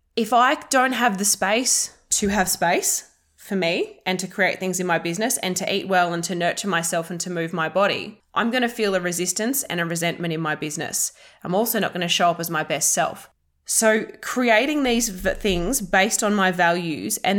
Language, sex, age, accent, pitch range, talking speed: English, female, 20-39, Australian, 180-220 Hz, 215 wpm